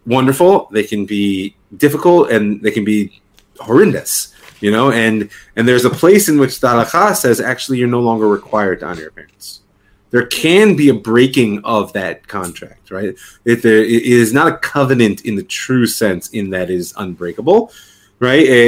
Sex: male